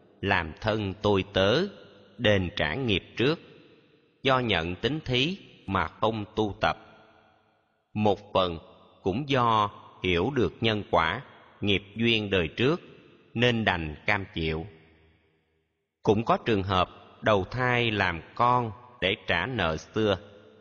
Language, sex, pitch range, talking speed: Vietnamese, male, 95-115 Hz, 130 wpm